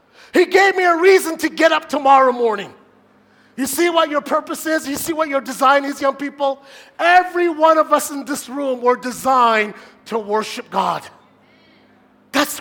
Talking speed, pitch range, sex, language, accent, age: 175 wpm, 280-330 Hz, male, English, American, 40-59